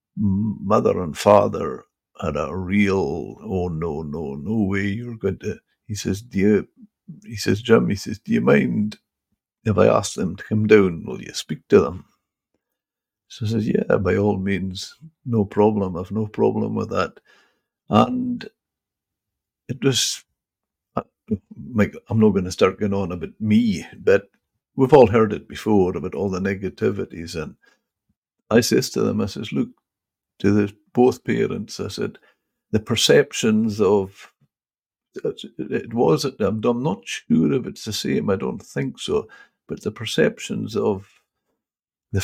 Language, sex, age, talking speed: English, male, 60-79, 160 wpm